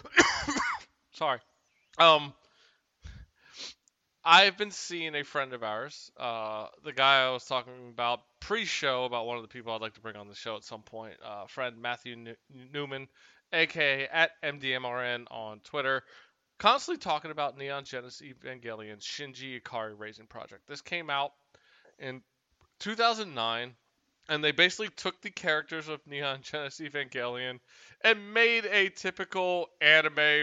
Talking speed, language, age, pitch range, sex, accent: 140 wpm, English, 20-39, 125-180 Hz, male, American